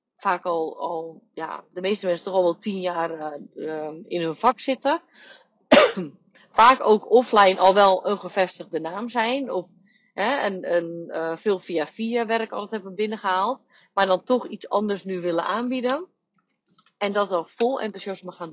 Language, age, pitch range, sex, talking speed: Dutch, 30-49, 180-230 Hz, female, 165 wpm